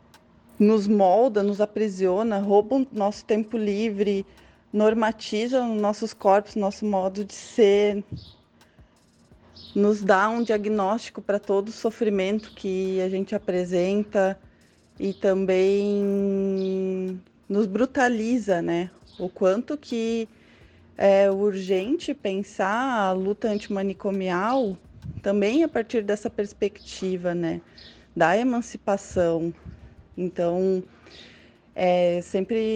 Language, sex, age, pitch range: Portuguese, female, 20-39, 185-220 Hz